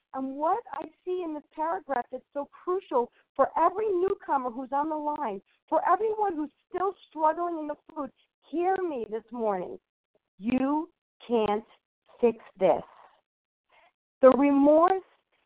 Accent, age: American, 50-69